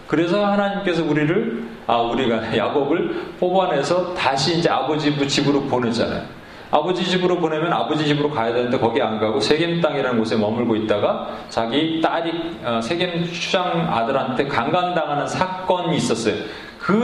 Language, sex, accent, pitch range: Korean, male, native, 135-200 Hz